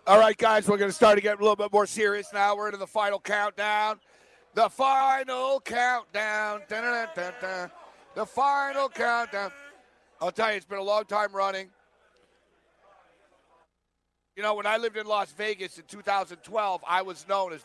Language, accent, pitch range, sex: English, American, 175-215 Hz, male